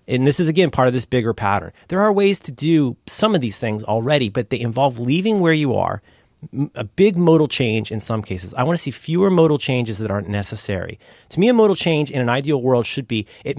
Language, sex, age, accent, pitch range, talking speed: English, male, 30-49, American, 105-140 Hz, 245 wpm